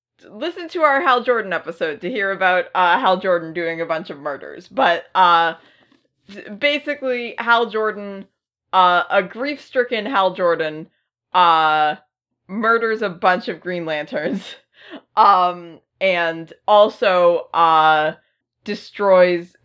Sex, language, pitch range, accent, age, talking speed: female, English, 165-200 Hz, American, 20-39, 120 wpm